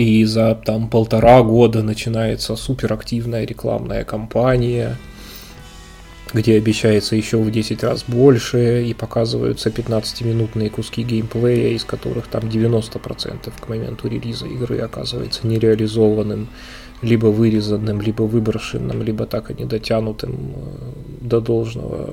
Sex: male